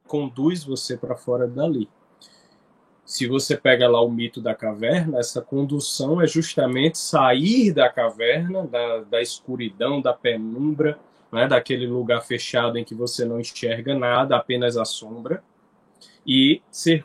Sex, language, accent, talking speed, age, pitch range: male, Portuguese, Brazilian, 140 wpm, 20-39, 125-205 Hz